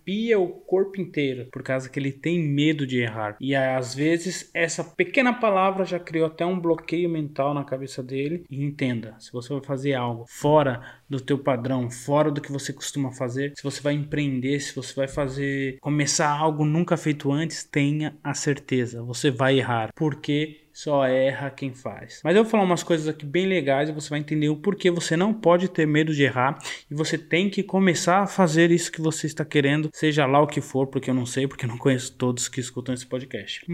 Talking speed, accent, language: 215 wpm, Brazilian, Portuguese